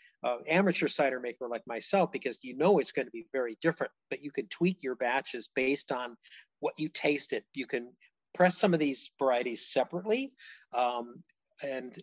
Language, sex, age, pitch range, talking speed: English, male, 40-59, 125-170 Hz, 180 wpm